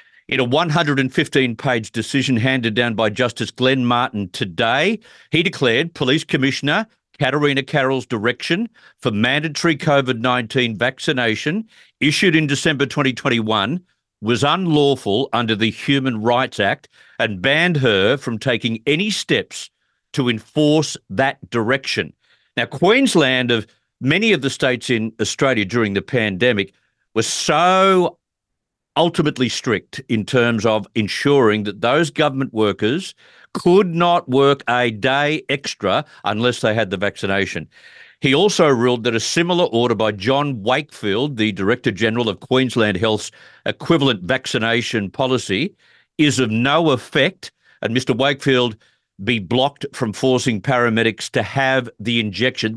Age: 50-69